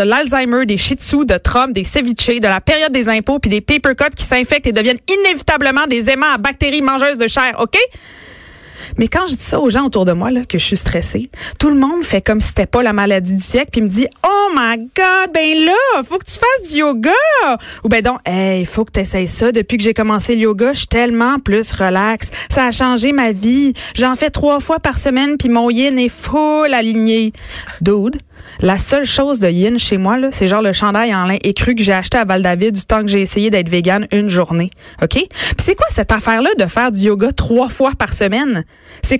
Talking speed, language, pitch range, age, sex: 240 wpm, French, 210-275 Hz, 30-49, female